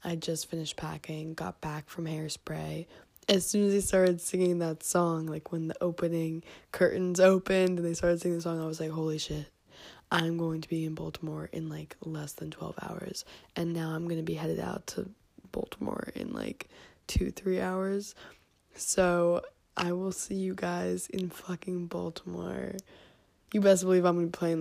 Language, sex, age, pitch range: English, female, 20-39, 165-205 Hz